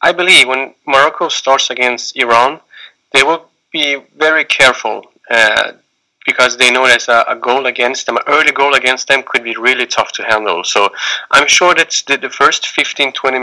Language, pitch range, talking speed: English, 120-145 Hz, 185 wpm